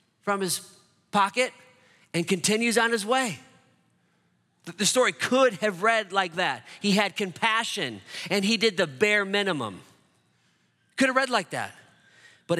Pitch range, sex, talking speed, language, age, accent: 175-230 Hz, male, 145 wpm, English, 30-49, American